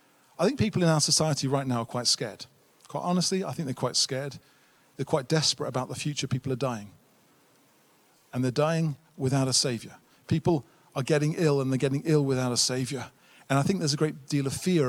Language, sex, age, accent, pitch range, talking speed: English, male, 40-59, British, 140-180 Hz, 215 wpm